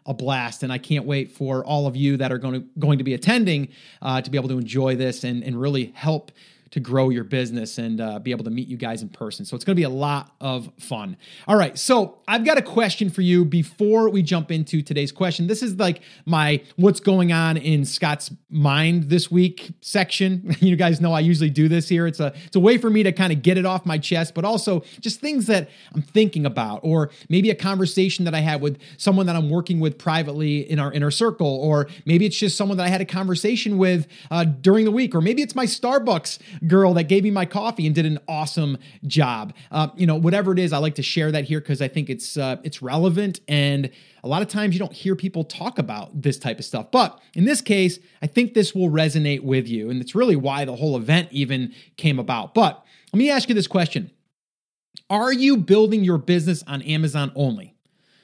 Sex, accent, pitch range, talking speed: male, American, 145-190 Hz, 235 wpm